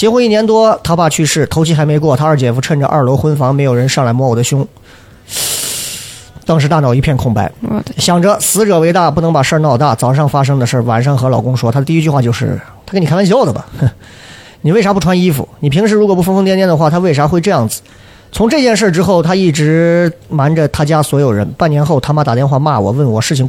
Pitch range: 125-165 Hz